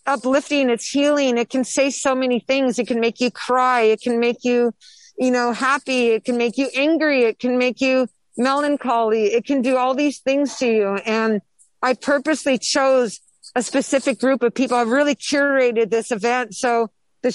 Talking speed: 190 wpm